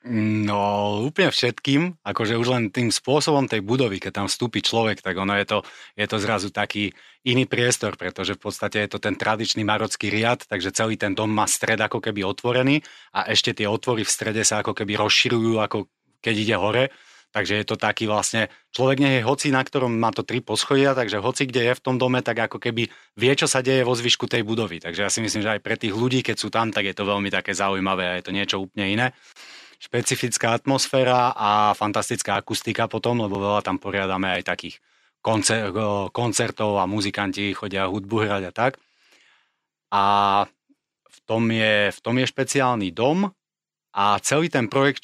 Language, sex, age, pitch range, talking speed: Slovak, male, 30-49, 105-125 Hz, 195 wpm